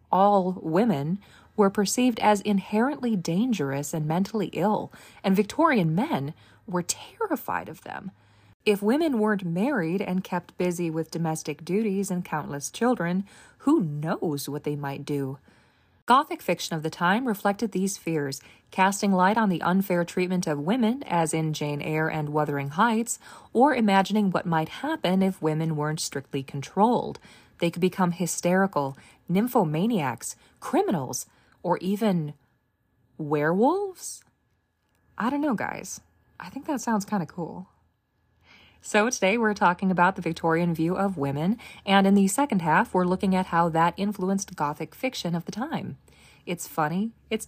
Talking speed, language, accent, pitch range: 150 wpm, English, American, 155-210 Hz